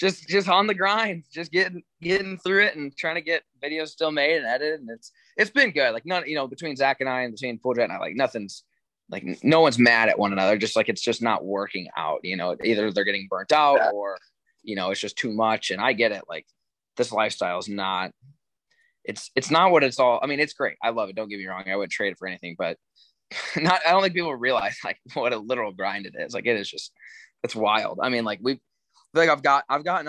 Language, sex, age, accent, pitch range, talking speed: English, male, 20-39, American, 110-155 Hz, 255 wpm